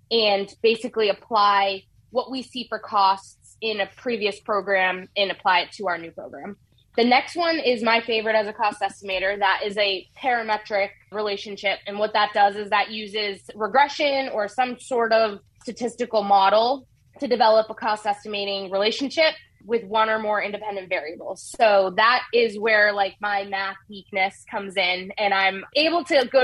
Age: 20-39